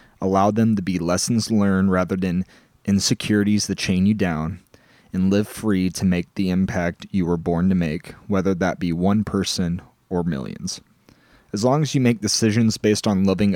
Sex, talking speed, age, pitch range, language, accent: male, 180 wpm, 20-39, 90-105 Hz, English, American